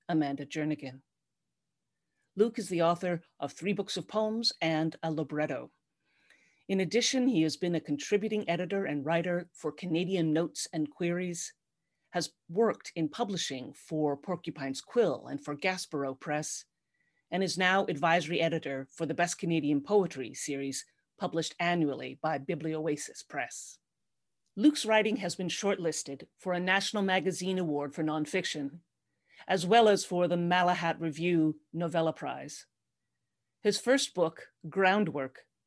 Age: 40-59